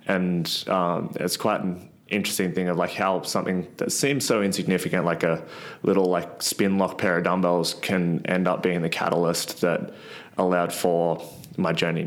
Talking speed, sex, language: 175 wpm, male, English